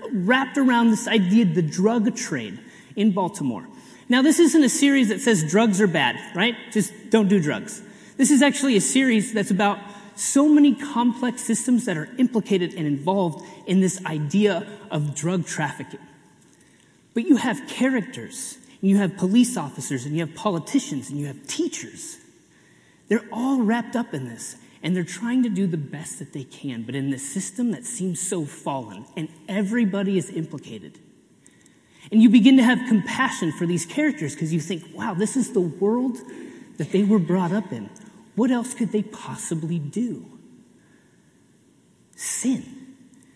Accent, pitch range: American, 175-240 Hz